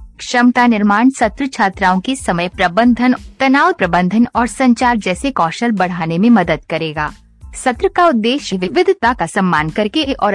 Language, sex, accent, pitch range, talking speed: Hindi, female, native, 180-250 Hz, 145 wpm